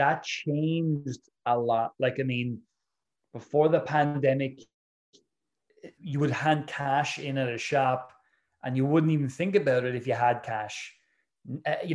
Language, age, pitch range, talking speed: English, 20-39, 125-150 Hz, 150 wpm